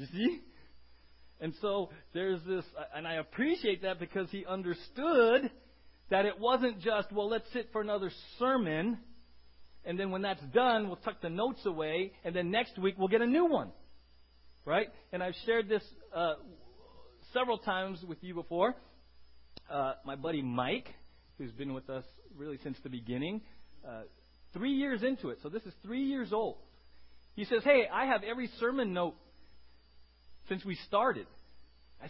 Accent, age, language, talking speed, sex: American, 40-59, English, 165 wpm, male